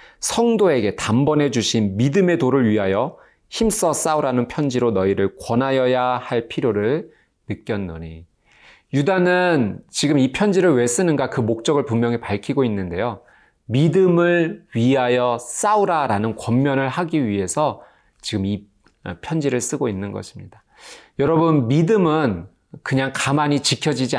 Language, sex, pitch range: Korean, male, 110-155 Hz